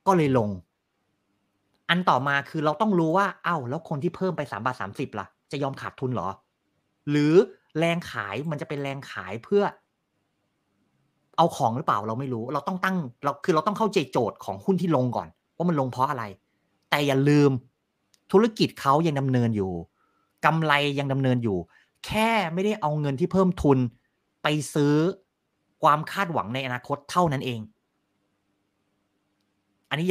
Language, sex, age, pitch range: Thai, male, 30-49, 120-175 Hz